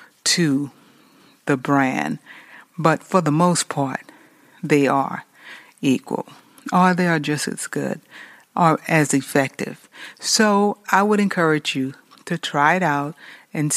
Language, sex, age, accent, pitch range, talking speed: English, female, 60-79, American, 145-195 Hz, 130 wpm